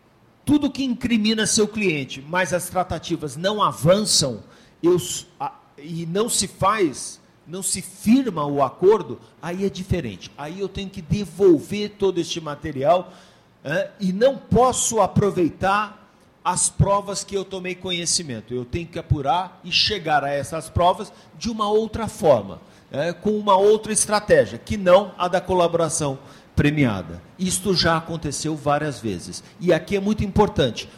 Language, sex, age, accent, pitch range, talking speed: Portuguese, male, 50-69, Brazilian, 155-210 Hz, 140 wpm